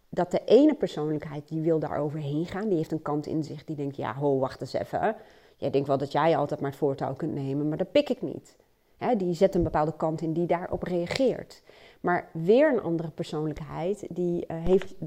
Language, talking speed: Dutch, 220 wpm